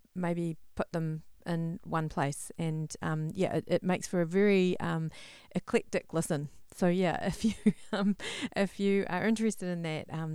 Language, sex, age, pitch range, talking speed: English, female, 40-59, 160-200 Hz, 175 wpm